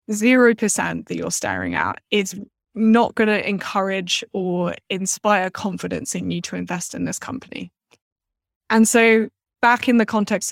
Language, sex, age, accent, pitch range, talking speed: English, female, 10-29, British, 190-220 Hz, 145 wpm